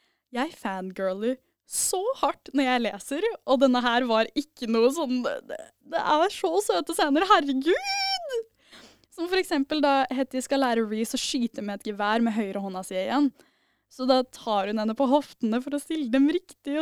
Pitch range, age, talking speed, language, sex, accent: 240-335 Hz, 10-29, 215 wpm, English, female, Norwegian